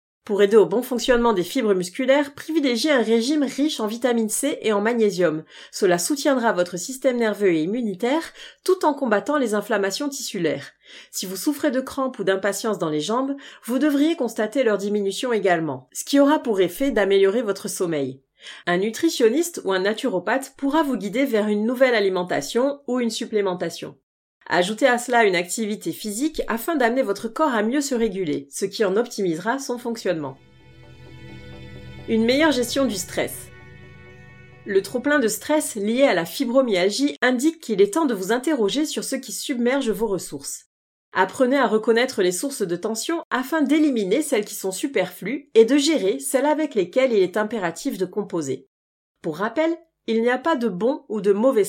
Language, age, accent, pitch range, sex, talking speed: French, 30-49, French, 195-275 Hz, female, 175 wpm